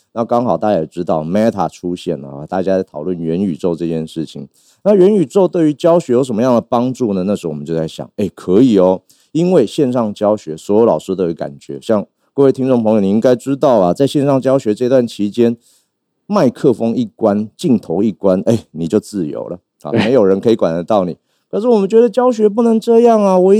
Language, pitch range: Chinese, 90-130 Hz